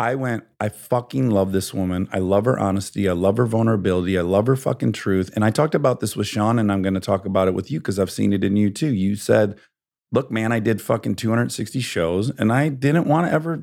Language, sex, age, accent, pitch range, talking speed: English, male, 40-59, American, 100-130 Hz, 255 wpm